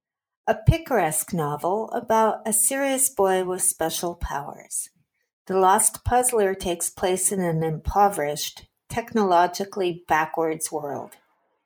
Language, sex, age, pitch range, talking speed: English, female, 50-69, 175-215 Hz, 110 wpm